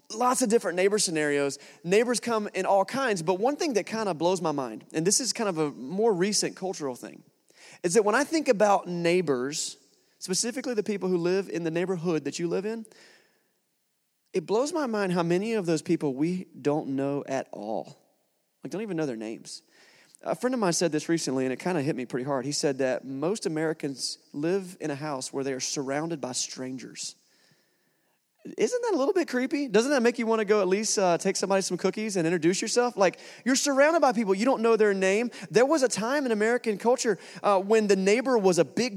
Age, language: 30-49, English